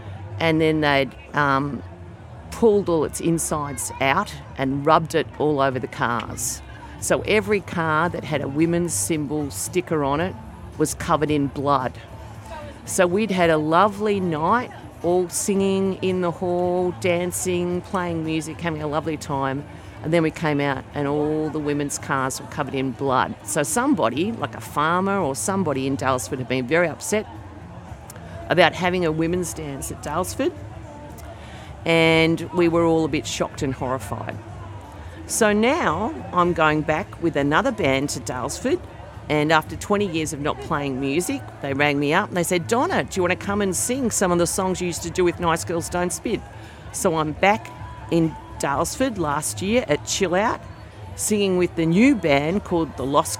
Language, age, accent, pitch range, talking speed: English, 50-69, Australian, 135-175 Hz, 175 wpm